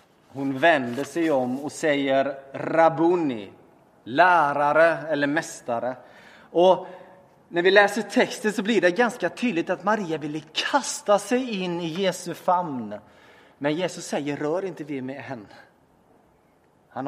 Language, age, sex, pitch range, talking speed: Swedish, 30-49, male, 140-180 Hz, 135 wpm